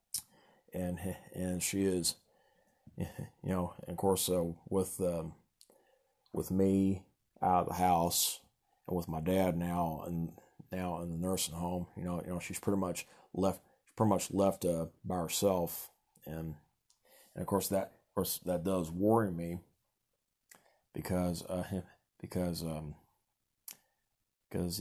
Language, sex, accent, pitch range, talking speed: English, male, American, 85-95 Hz, 145 wpm